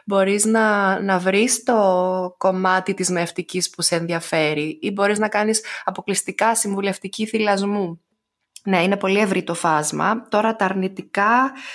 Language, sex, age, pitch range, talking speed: Greek, female, 20-39, 170-205 Hz, 140 wpm